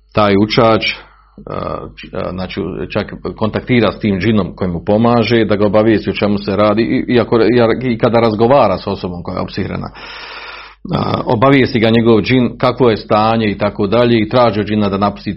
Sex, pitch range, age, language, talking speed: male, 100-120 Hz, 40-59, Croatian, 160 wpm